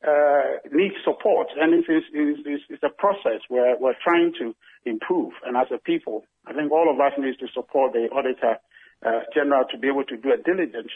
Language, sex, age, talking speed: English, male, 50-69, 210 wpm